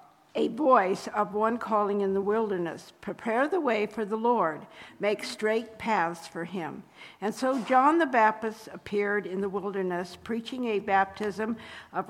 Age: 60-79